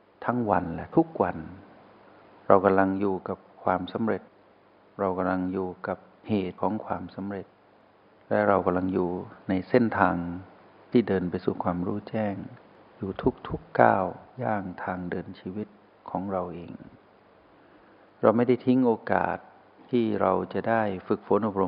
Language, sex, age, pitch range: Thai, male, 60-79, 90-110 Hz